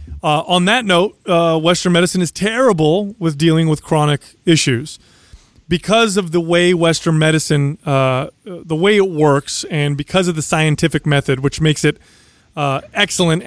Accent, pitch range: American, 145-180 Hz